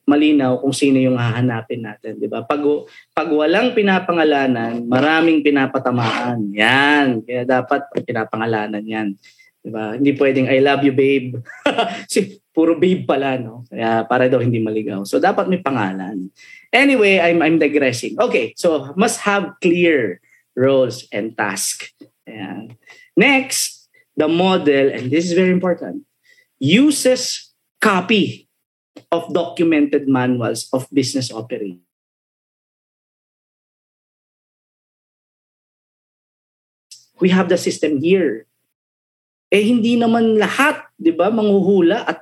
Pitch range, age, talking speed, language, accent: 130-190 Hz, 20-39, 115 wpm, Filipino, native